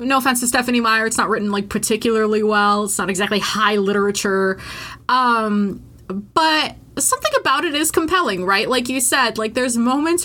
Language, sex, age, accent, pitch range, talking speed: English, female, 20-39, American, 195-260 Hz, 175 wpm